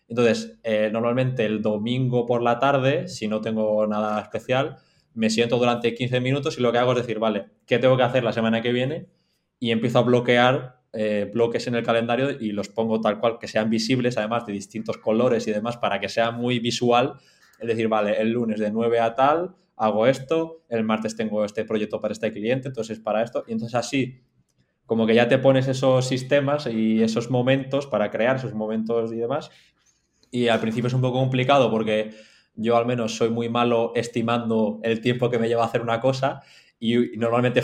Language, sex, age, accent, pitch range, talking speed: Spanish, male, 20-39, Spanish, 110-125 Hz, 205 wpm